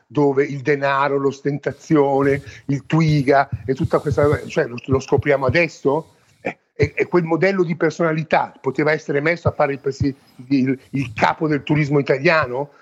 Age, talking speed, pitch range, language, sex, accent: 50-69, 145 wpm, 135-175 Hz, Italian, male, native